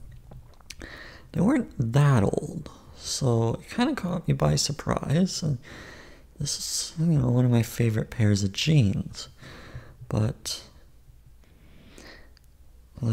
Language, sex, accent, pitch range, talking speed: English, male, American, 100-130 Hz, 120 wpm